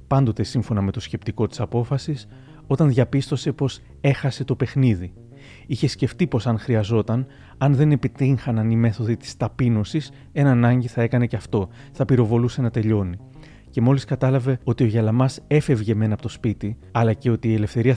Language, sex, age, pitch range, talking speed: Greek, male, 30-49, 110-135 Hz, 170 wpm